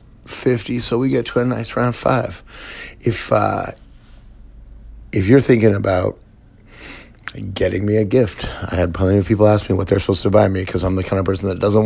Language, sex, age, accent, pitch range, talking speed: English, male, 30-49, American, 95-115 Hz, 200 wpm